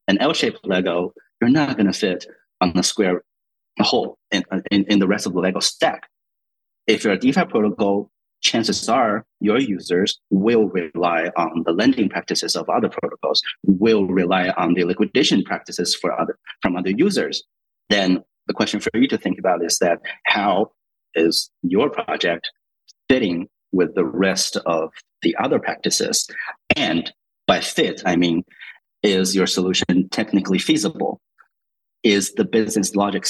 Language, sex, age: English, male, 30-49